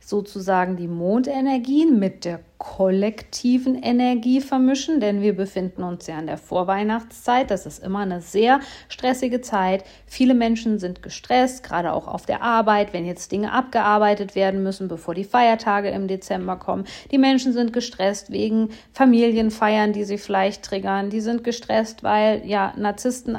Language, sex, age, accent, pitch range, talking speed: German, female, 50-69, German, 205-235 Hz, 155 wpm